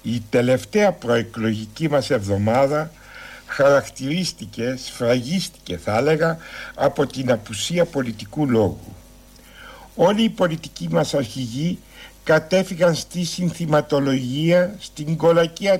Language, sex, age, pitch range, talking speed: Greek, male, 60-79, 135-185 Hz, 90 wpm